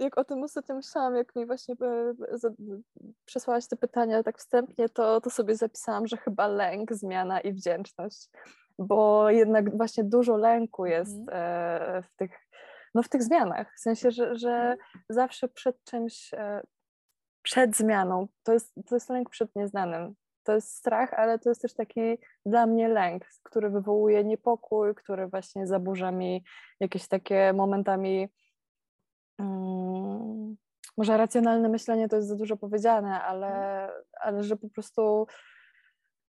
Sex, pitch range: female, 190-230 Hz